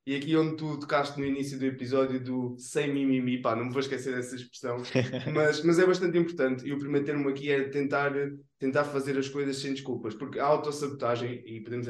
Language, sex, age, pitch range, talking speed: Portuguese, male, 20-39, 120-135 Hz, 215 wpm